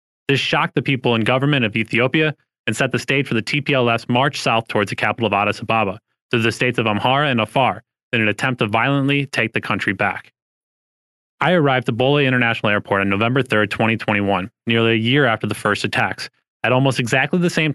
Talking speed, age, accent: 205 wpm, 20-39, American